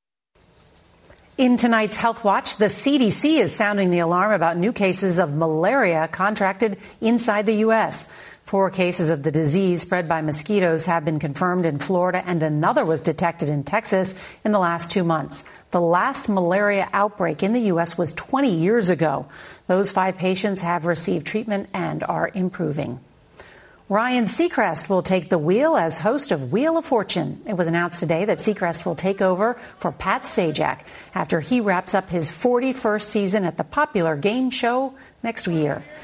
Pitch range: 170-215 Hz